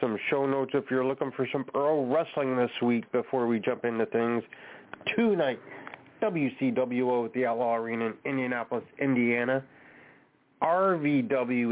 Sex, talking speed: male, 140 wpm